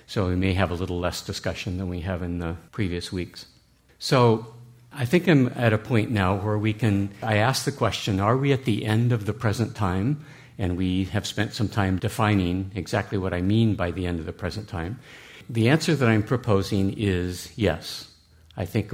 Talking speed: 210 wpm